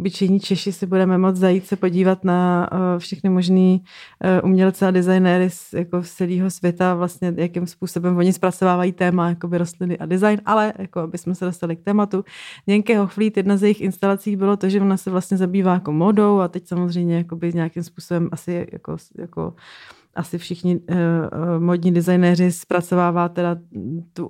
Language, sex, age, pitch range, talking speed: Czech, female, 30-49, 175-190 Hz, 170 wpm